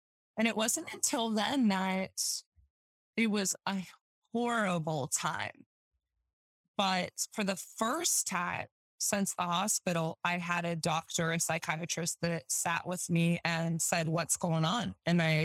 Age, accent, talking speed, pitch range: 20-39, American, 140 wpm, 170-220 Hz